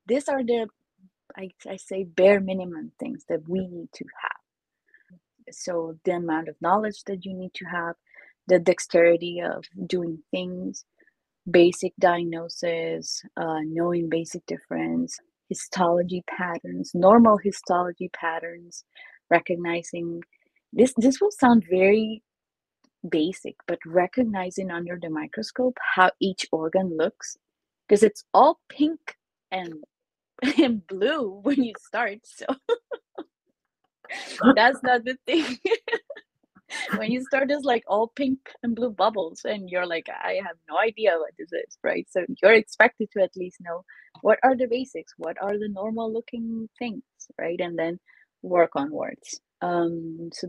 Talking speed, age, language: 140 wpm, 30-49, English